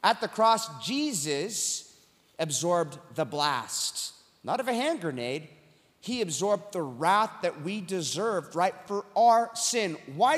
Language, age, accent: English, 30-49, American